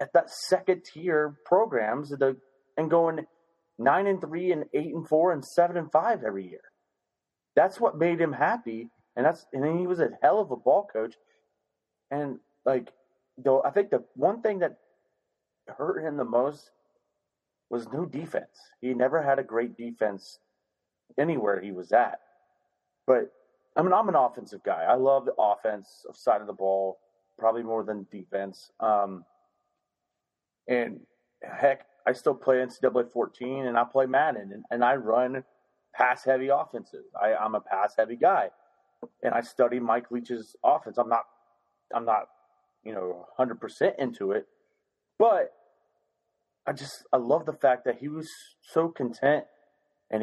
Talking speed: 160 wpm